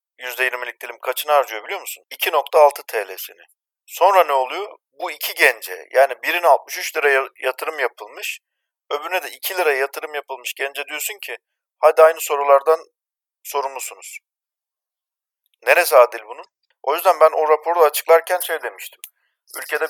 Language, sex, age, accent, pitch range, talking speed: Turkish, male, 50-69, native, 135-160 Hz, 135 wpm